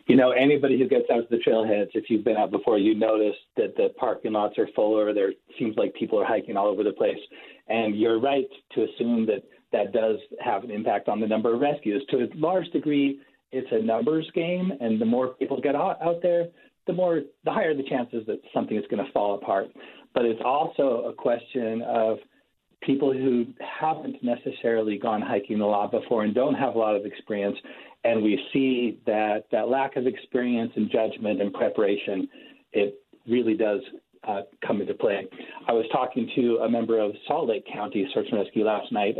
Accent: American